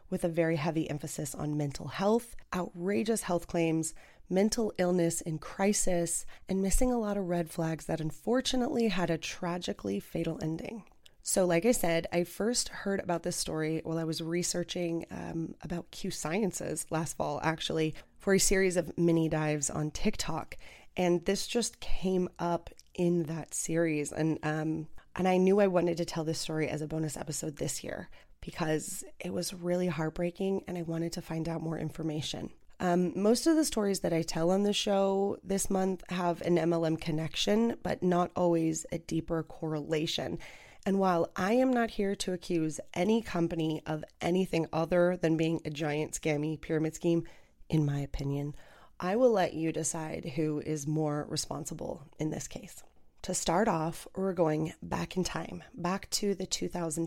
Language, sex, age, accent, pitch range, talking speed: English, female, 20-39, American, 160-185 Hz, 175 wpm